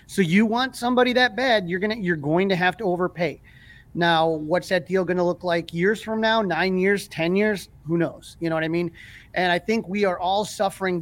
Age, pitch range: 30-49, 165-195 Hz